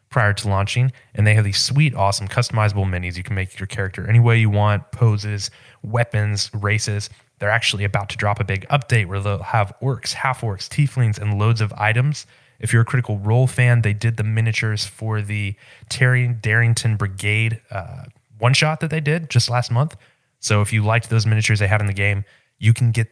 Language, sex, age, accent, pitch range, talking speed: English, male, 20-39, American, 100-125 Hz, 210 wpm